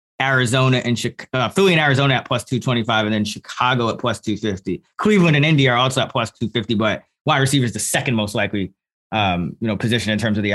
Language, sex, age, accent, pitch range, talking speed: English, male, 20-39, American, 115-145 Hz, 250 wpm